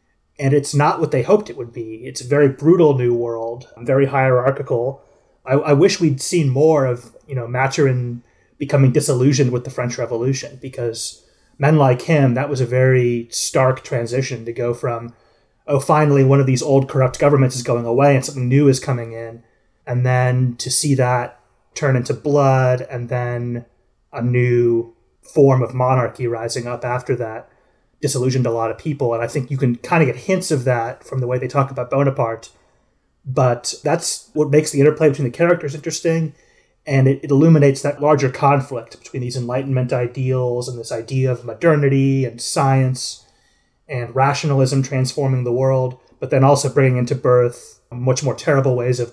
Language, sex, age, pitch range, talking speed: English, male, 30-49, 125-145 Hz, 180 wpm